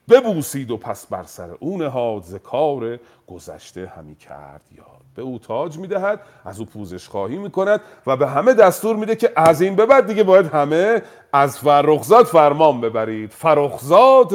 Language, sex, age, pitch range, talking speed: Persian, male, 40-59, 105-175 Hz, 170 wpm